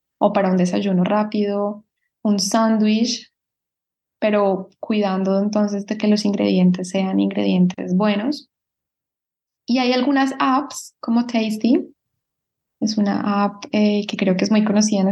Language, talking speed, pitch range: English, 135 wpm, 195-230 Hz